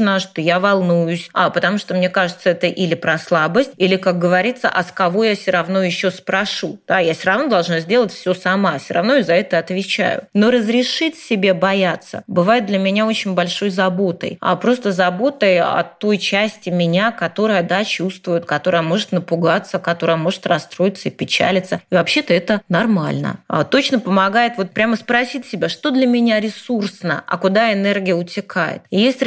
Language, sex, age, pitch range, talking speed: Russian, female, 20-39, 180-215 Hz, 175 wpm